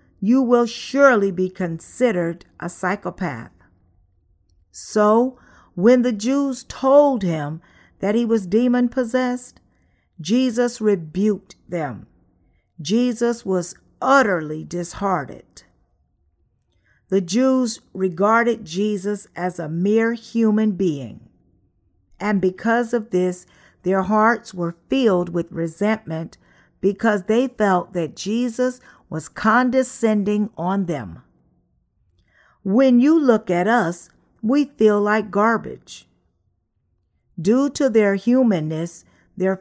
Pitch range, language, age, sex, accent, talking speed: 160-225 Hz, English, 50-69, female, American, 100 wpm